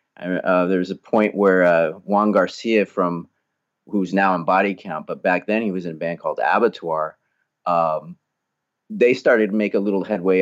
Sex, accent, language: male, American, English